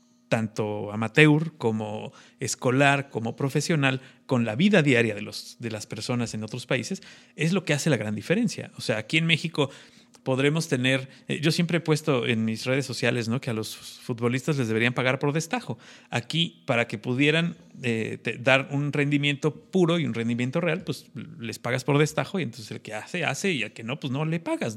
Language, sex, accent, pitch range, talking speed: Spanish, male, Mexican, 115-150 Hz, 200 wpm